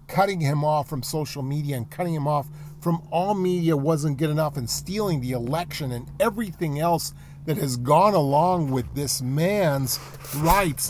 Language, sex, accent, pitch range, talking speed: English, male, American, 145-215 Hz, 170 wpm